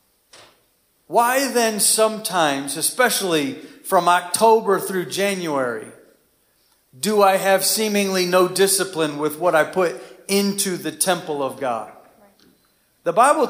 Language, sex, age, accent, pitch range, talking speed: English, male, 50-69, American, 175-220 Hz, 110 wpm